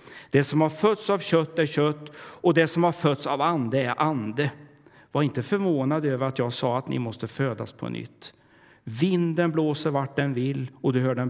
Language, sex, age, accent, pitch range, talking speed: Swedish, male, 60-79, native, 125-160 Hz, 205 wpm